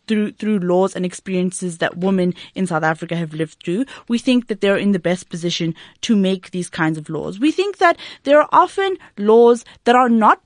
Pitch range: 180-255 Hz